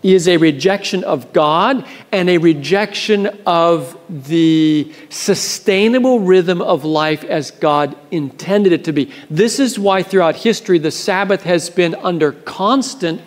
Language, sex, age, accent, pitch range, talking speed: English, male, 50-69, American, 160-205 Hz, 140 wpm